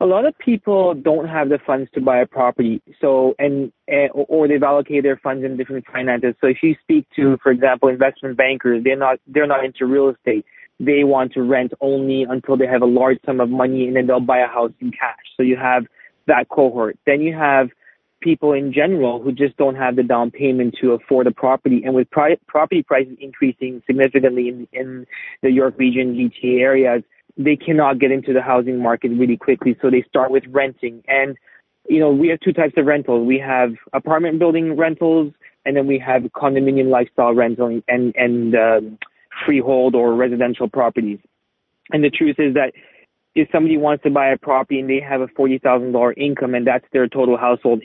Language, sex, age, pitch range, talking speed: English, male, 20-39, 125-140 Hz, 200 wpm